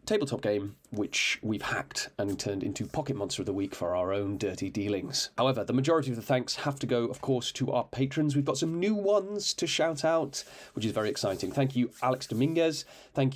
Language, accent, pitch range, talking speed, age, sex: English, British, 110-155 Hz, 220 wpm, 30-49, male